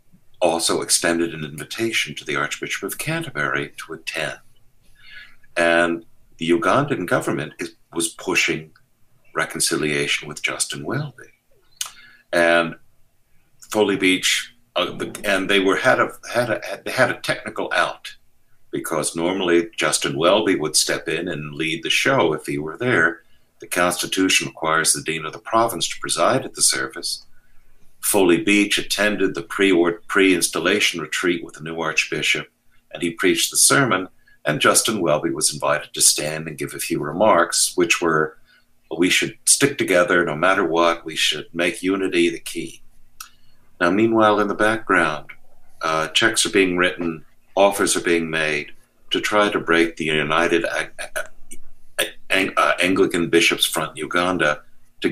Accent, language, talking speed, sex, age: American, English, 140 wpm, male, 60-79